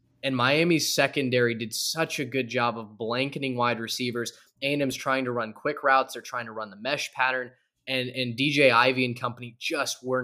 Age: 10-29